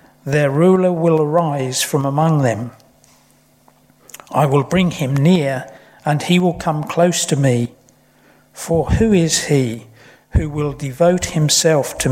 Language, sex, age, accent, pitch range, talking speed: English, male, 60-79, British, 135-170 Hz, 140 wpm